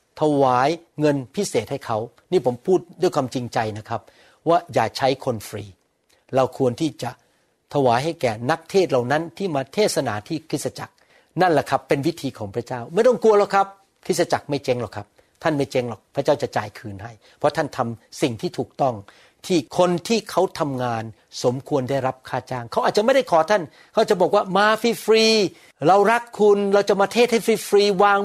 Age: 60-79